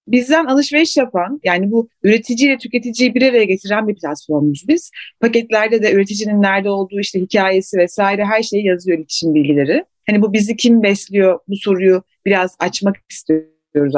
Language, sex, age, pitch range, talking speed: Turkish, female, 40-59, 200-280 Hz, 155 wpm